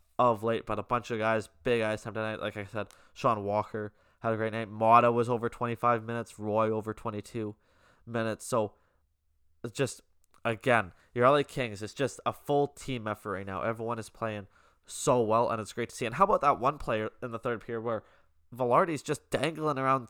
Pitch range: 105-125 Hz